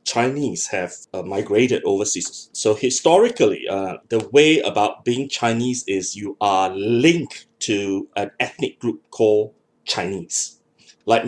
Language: English